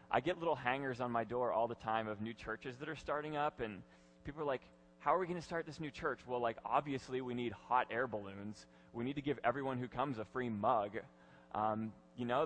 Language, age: English, 20-39